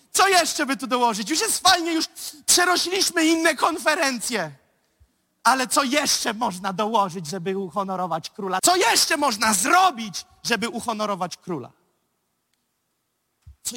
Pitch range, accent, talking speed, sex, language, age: 145-215 Hz, native, 120 wpm, male, Polish, 30-49